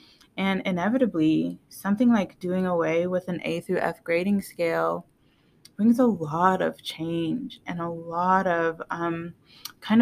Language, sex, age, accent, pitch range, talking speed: English, female, 20-39, American, 165-205 Hz, 145 wpm